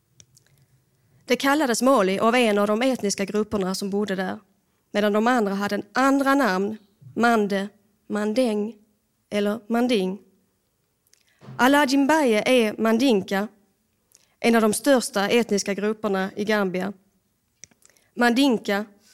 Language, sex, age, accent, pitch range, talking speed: Swedish, female, 30-49, native, 195-235 Hz, 110 wpm